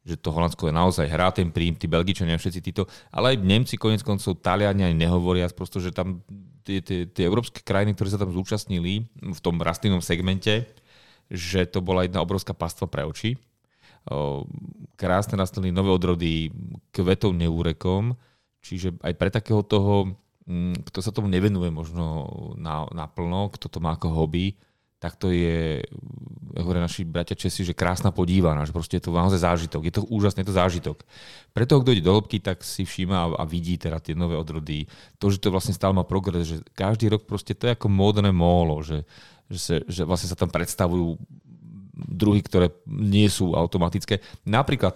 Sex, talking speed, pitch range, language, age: male, 175 wpm, 85-105 Hz, Slovak, 30-49